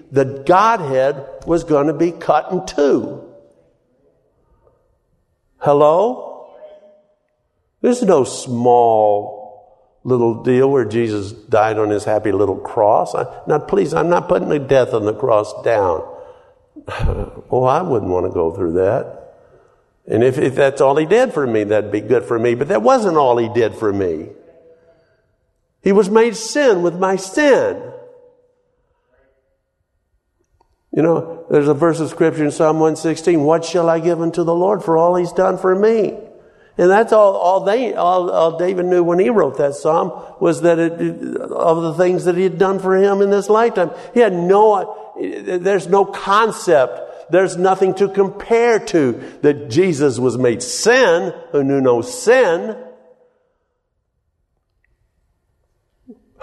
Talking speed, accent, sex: 150 wpm, American, male